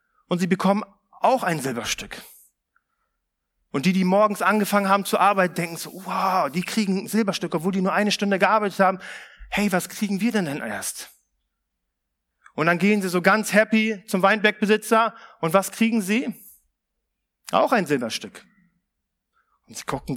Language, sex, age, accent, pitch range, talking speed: German, male, 40-59, German, 190-240 Hz, 160 wpm